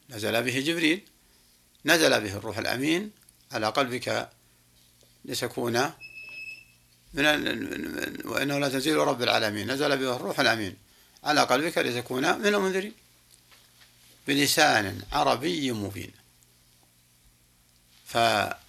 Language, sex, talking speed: Arabic, male, 90 wpm